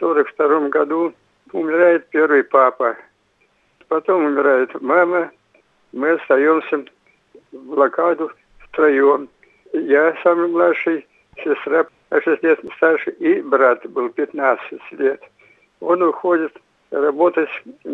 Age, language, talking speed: 60-79, Russian, 100 wpm